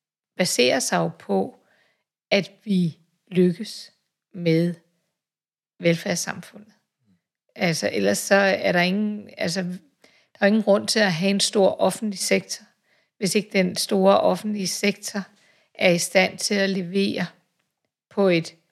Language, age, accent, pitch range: Danish, 60-79, native, 180-205 Hz